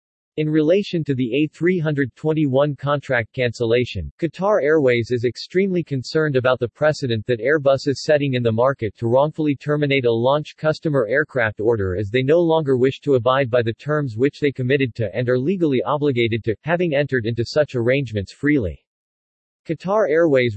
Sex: male